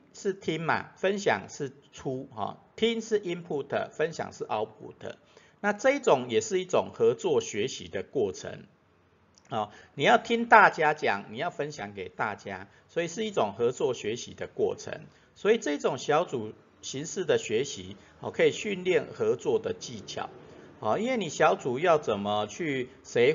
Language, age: Chinese, 50-69